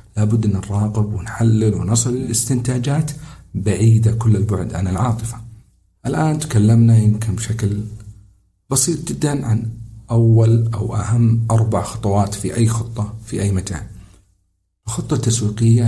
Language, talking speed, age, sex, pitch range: Arabic, 115 wpm, 50-69, male, 105-120 Hz